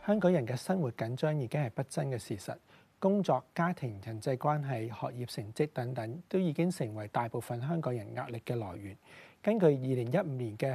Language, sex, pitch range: Chinese, male, 120-165 Hz